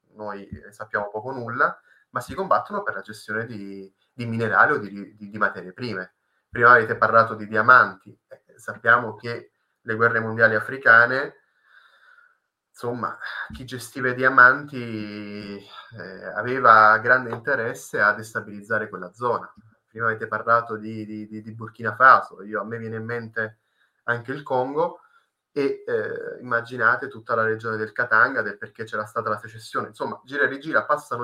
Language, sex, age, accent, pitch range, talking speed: Italian, male, 20-39, native, 105-125 Hz, 150 wpm